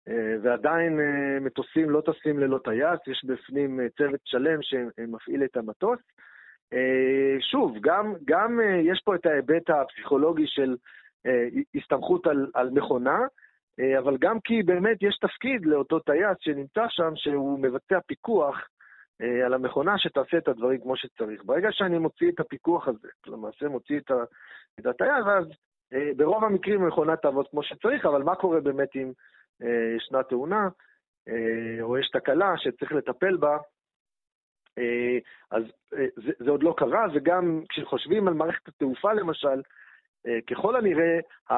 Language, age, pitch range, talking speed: Hebrew, 40-59, 130-175 Hz, 130 wpm